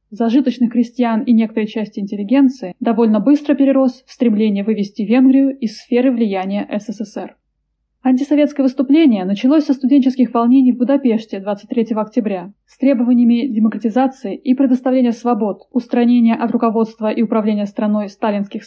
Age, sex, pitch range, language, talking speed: 20-39, female, 215-255 Hz, Russian, 130 wpm